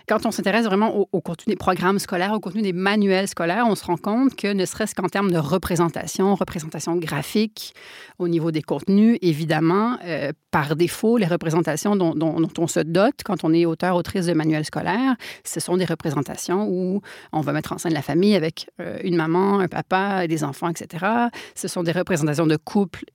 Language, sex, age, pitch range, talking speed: French, female, 30-49, 170-220 Hz, 200 wpm